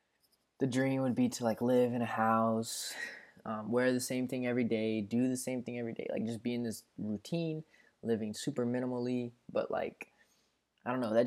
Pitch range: 110-125 Hz